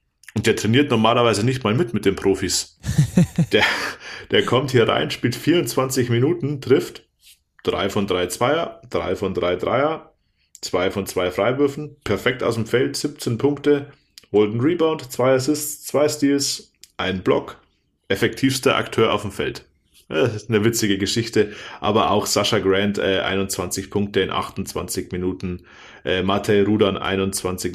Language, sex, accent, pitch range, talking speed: German, male, German, 95-125 Hz, 150 wpm